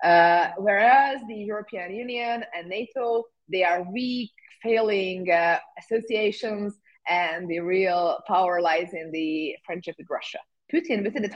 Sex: female